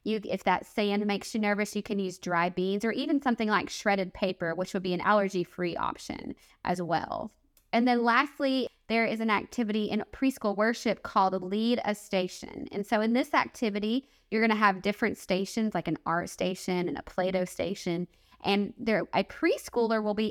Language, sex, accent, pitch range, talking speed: English, female, American, 190-235 Hz, 190 wpm